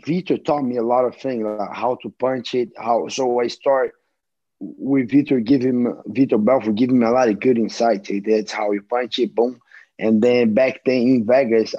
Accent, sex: Brazilian, male